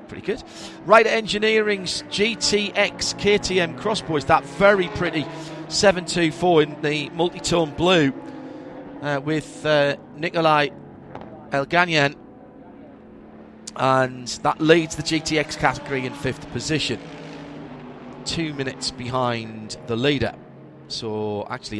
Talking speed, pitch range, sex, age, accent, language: 100 wpm, 130-175 Hz, male, 40-59, British, English